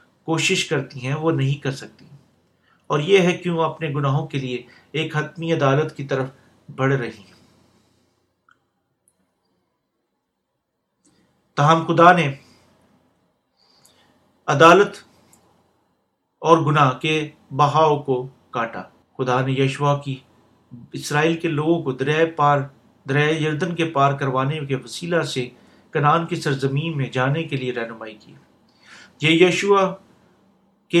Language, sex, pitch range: Urdu, male, 135-170 Hz